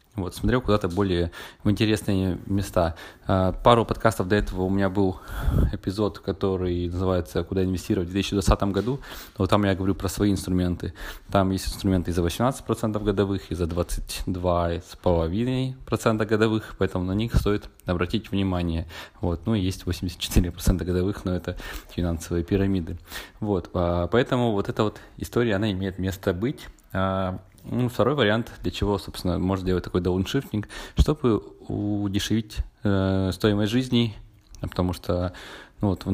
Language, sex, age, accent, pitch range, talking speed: Russian, male, 20-39, native, 90-105 Hz, 140 wpm